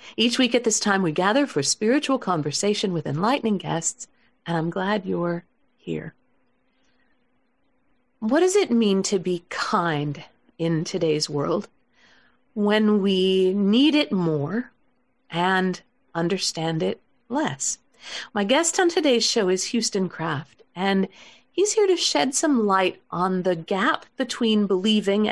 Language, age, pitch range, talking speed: English, 50-69, 180-250 Hz, 135 wpm